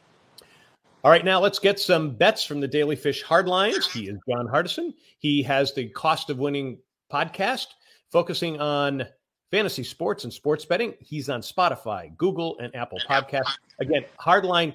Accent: American